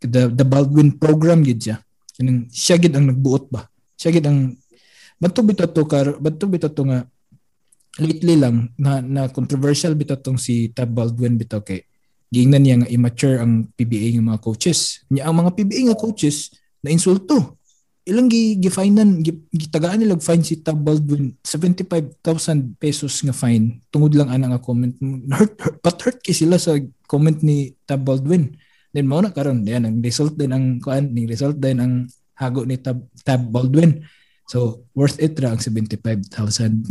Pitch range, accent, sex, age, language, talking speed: 120-155 Hz, native, male, 20-39, Filipino, 165 wpm